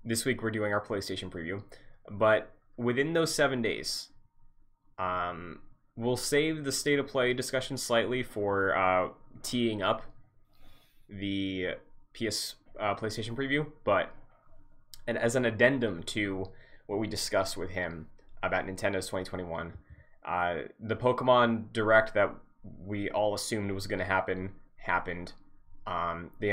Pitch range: 95-115 Hz